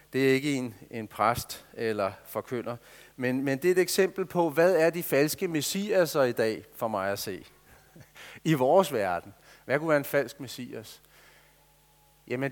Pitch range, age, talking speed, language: 130-170 Hz, 40-59, 175 wpm, Danish